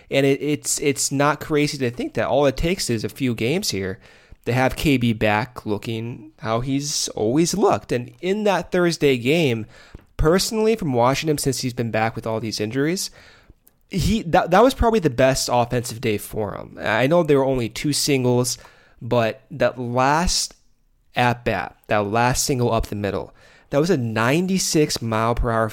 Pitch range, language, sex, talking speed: 115-150 Hz, English, male, 175 wpm